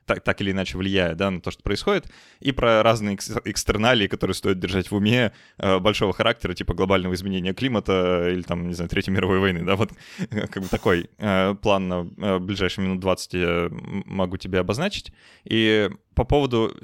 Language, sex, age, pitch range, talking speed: Russian, male, 20-39, 95-110 Hz, 170 wpm